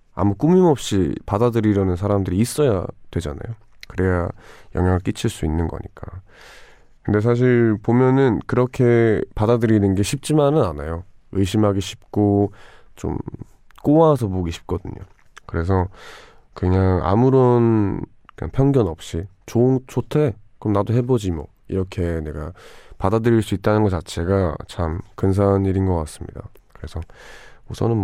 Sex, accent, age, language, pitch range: male, native, 20-39, Korean, 90-115 Hz